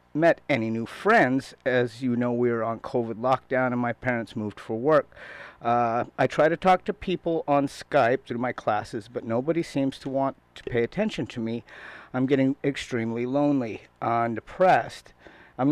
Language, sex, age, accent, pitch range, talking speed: English, male, 50-69, American, 120-150 Hz, 180 wpm